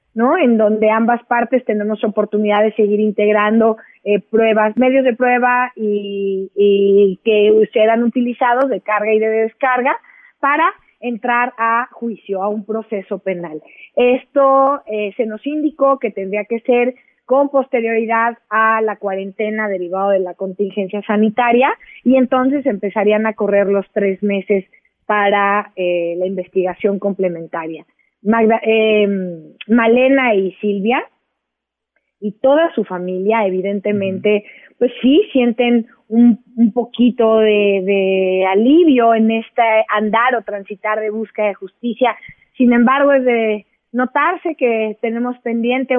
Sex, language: female, Spanish